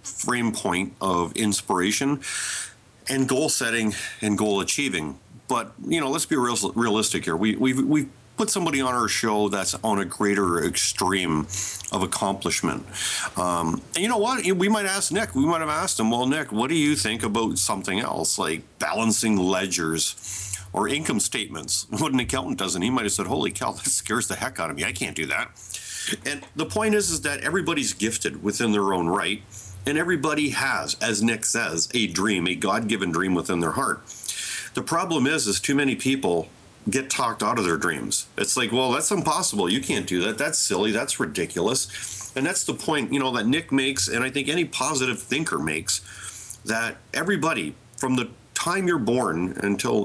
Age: 40-59